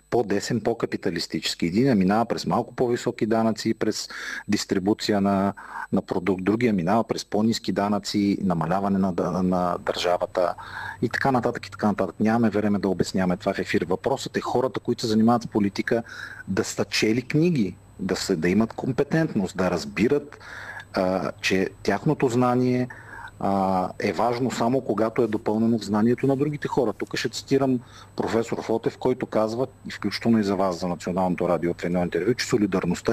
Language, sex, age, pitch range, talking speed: Bulgarian, male, 40-59, 100-130 Hz, 160 wpm